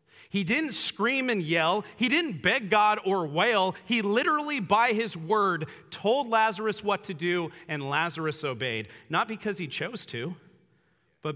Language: English